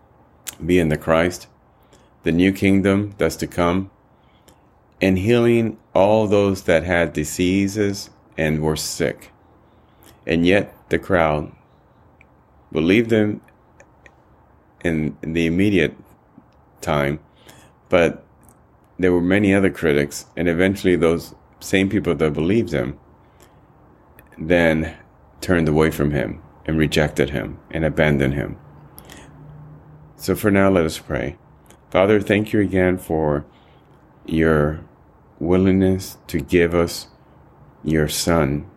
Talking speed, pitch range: 115 wpm, 75-95 Hz